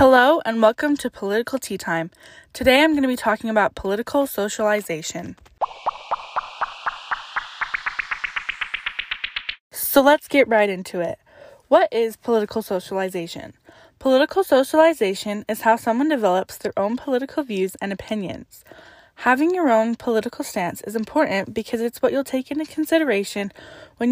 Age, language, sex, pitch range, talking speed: 10-29, English, female, 200-260 Hz, 130 wpm